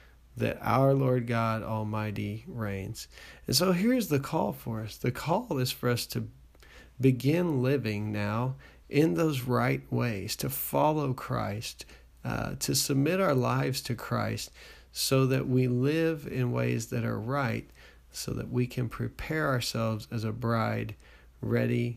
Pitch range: 110-135 Hz